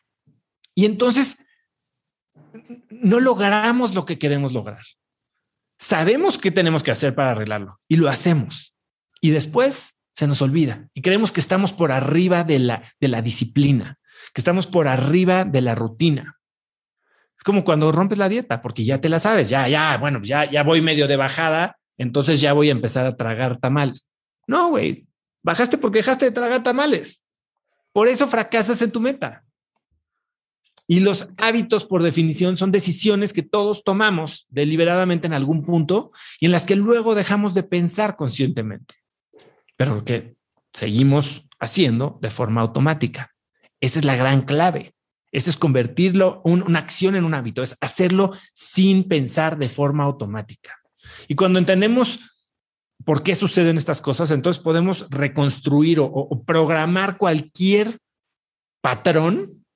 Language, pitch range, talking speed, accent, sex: Spanish, 140-195 Hz, 150 wpm, Mexican, male